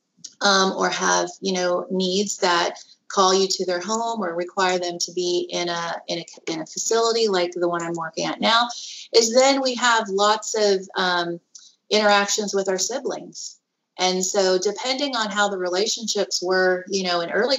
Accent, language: American, English